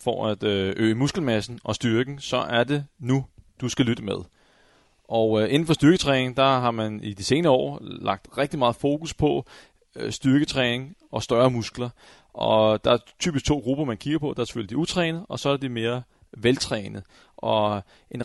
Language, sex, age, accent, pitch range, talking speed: Danish, male, 30-49, native, 110-140 Hz, 185 wpm